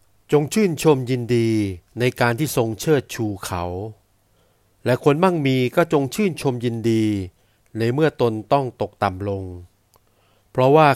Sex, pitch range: male, 105-130 Hz